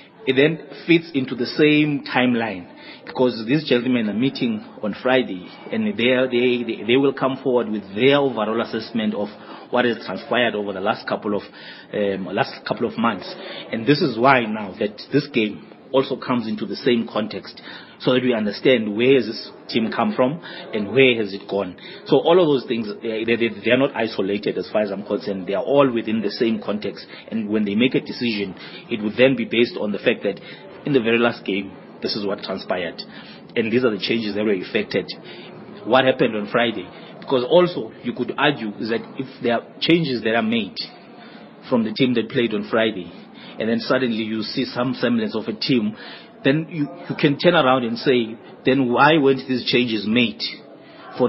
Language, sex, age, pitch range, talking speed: English, male, 30-49, 110-135 Hz, 200 wpm